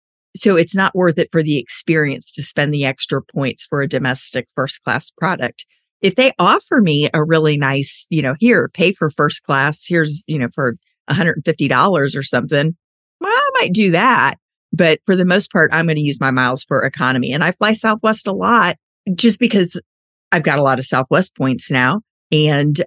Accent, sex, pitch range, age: American, female, 140-180 Hz, 40-59